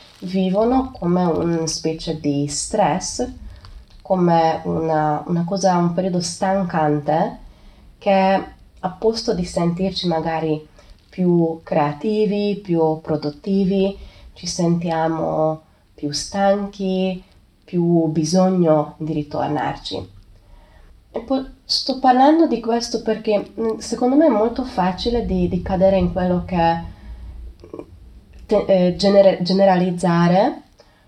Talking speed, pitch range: 95 wpm, 155-200 Hz